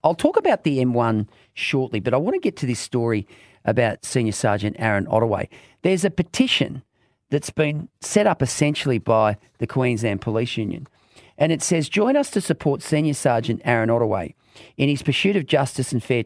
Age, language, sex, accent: 40-59, English, male, Australian